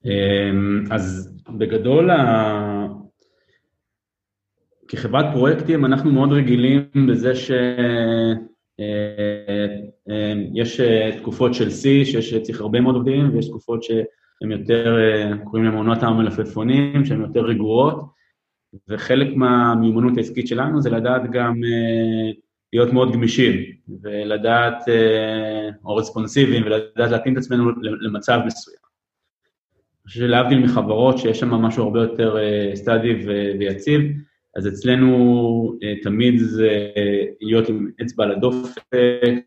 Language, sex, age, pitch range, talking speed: Hebrew, male, 30-49, 105-125 Hz, 100 wpm